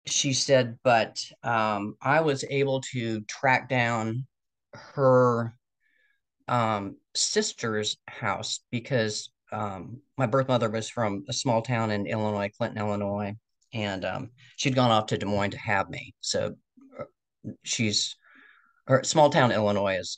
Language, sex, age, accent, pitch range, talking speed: English, male, 40-59, American, 105-130 Hz, 130 wpm